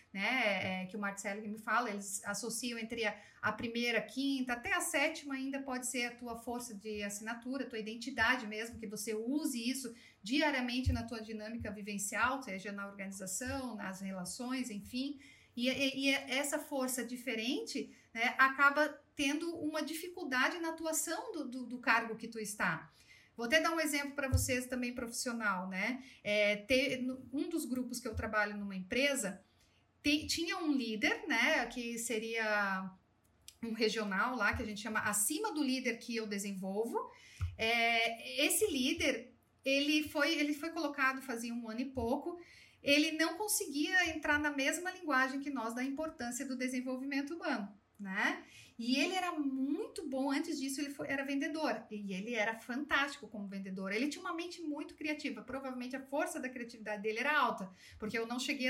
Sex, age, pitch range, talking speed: female, 40-59, 225-290 Hz, 170 wpm